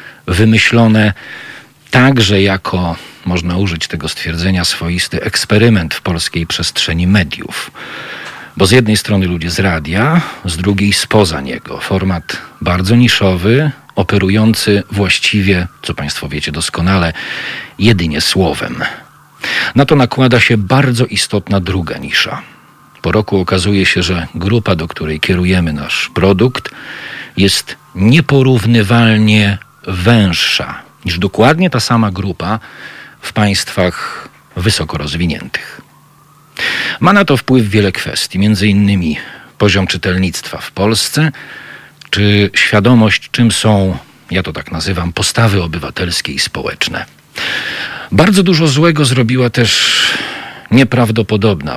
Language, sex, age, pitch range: Polish, male, 40-59, 90-115 Hz